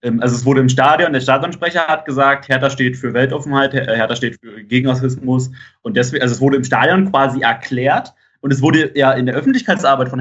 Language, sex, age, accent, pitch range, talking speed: German, male, 20-39, German, 115-135 Hz, 200 wpm